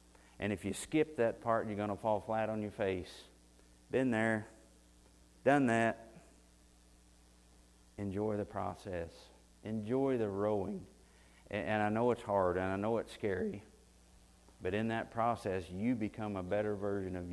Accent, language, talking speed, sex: American, English, 150 wpm, male